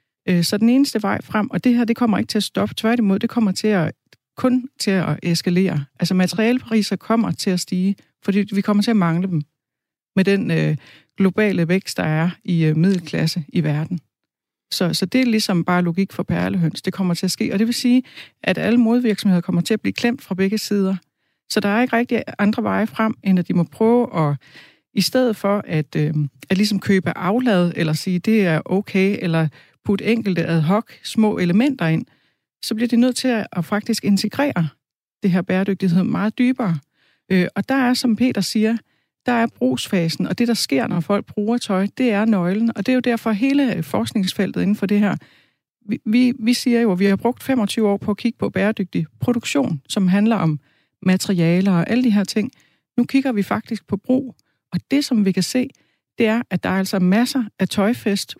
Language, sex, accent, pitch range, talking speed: Danish, female, native, 180-230 Hz, 210 wpm